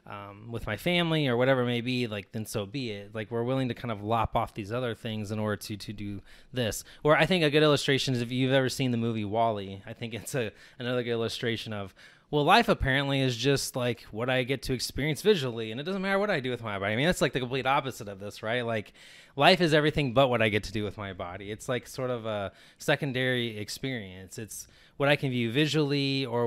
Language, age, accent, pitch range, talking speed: English, 20-39, American, 105-135 Hz, 255 wpm